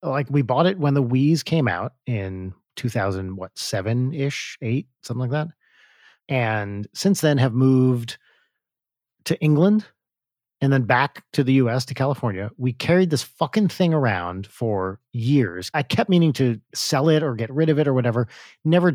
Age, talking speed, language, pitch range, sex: 40-59, 165 wpm, English, 105-145 Hz, male